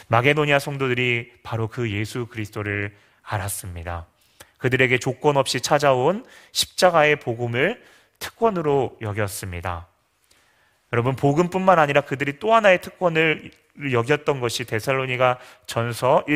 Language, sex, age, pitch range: Korean, male, 30-49, 110-150 Hz